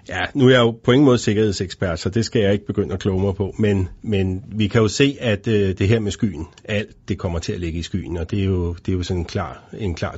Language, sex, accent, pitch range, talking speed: Danish, male, native, 95-115 Hz, 290 wpm